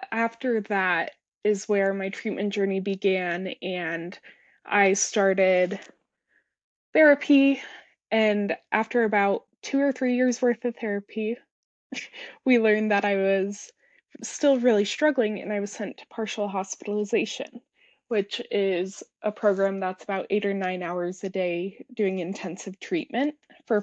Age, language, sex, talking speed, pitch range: 20-39, English, female, 135 wpm, 200-250 Hz